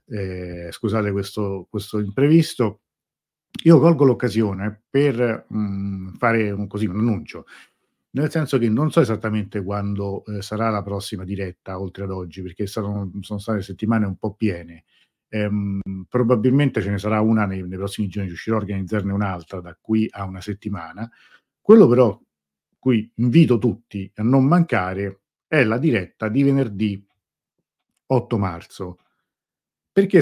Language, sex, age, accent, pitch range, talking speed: Italian, male, 50-69, native, 95-115 Hz, 140 wpm